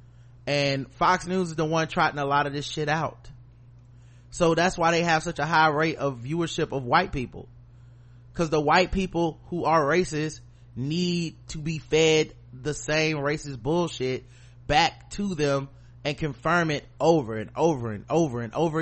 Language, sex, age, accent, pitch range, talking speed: English, male, 30-49, American, 120-170 Hz, 175 wpm